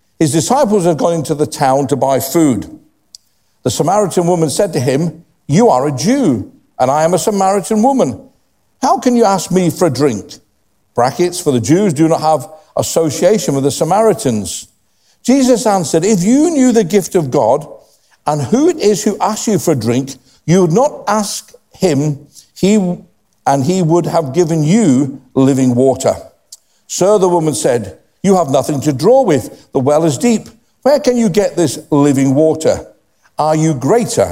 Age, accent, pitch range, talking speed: 50-69, British, 145-215 Hz, 175 wpm